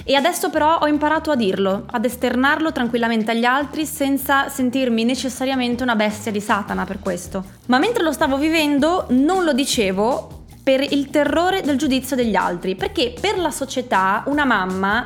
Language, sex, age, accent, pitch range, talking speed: Italian, female, 20-39, native, 220-290 Hz, 165 wpm